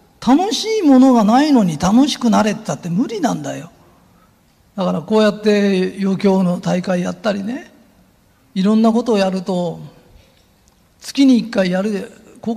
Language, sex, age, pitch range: Japanese, male, 50-69, 185-260 Hz